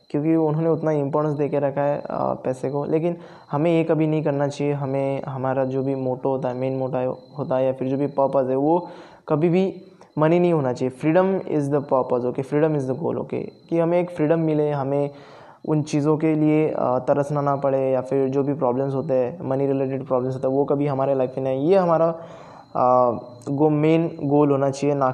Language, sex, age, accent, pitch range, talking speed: Hindi, male, 20-39, native, 135-150 Hz, 210 wpm